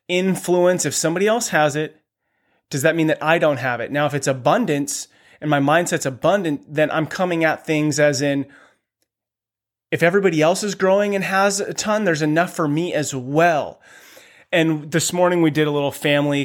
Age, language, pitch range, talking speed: 30-49, English, 130-155 Hz, 190 wpm